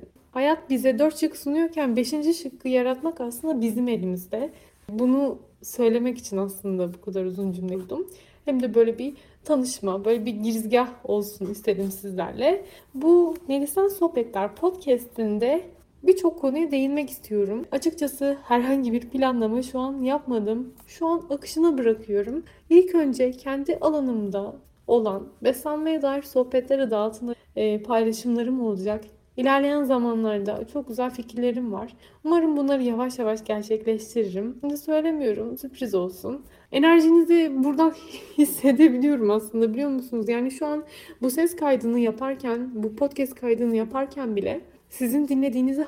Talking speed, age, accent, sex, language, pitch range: 125 wpm, 30-49, native, female, Turkish, 230-280 Hz